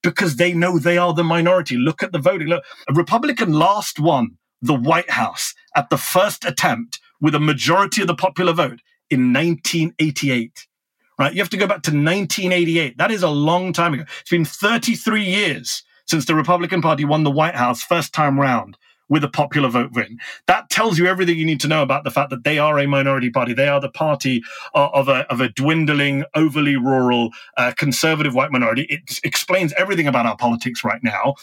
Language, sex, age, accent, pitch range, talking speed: English, male, 40-59, British, 140-205 Hz, 200 wpm